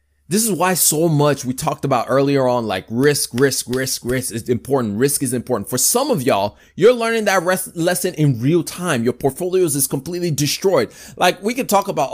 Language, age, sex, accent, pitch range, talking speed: English, 20-39, male, American, 140-195 Hz, 205 wpm